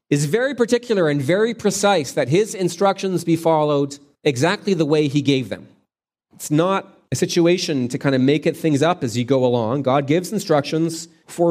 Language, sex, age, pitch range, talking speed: English, male, 30-49, 115-165 Hz, 190 wpm